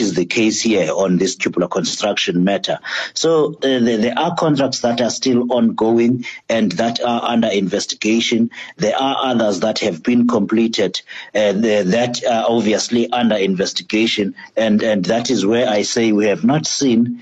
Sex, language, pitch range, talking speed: male, English, 105-125 Hz, 165 wpm